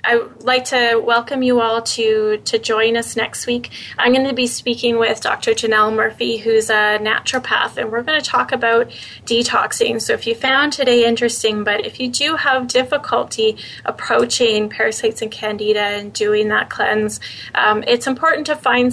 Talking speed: 180 wpm